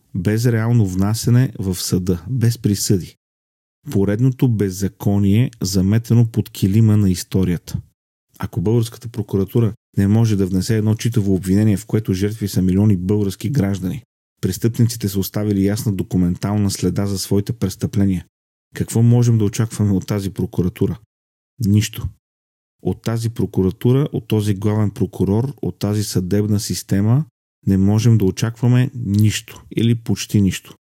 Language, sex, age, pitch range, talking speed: Bulgarian, male, 40-59, 95-115 Hz, 130 wpm